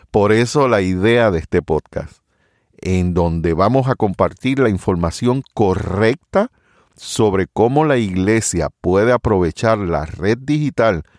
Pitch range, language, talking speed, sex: 90-125 Hz, Spanish, 130 wpm, male